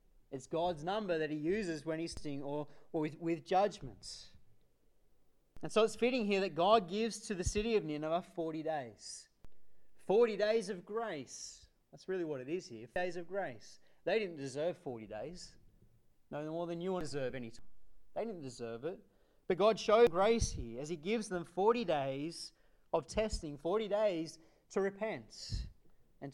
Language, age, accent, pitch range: English, 30-49, Australian, 130-180 Hz